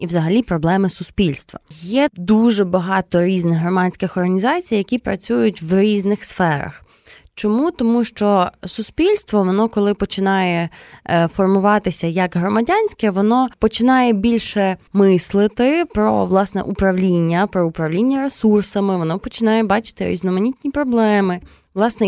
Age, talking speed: 20-39, 110 wpm